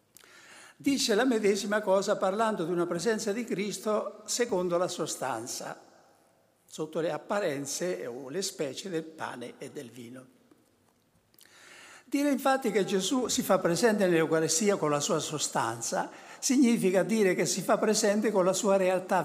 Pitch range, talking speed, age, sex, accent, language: 160-220 Hz, 145 wpm, 60-79, male, native, Italian